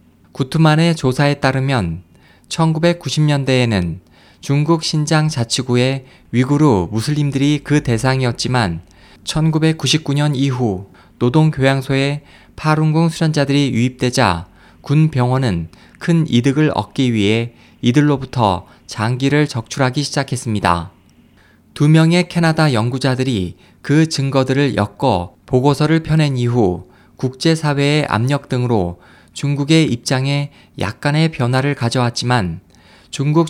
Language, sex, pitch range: Korean, male, 105-150 Hz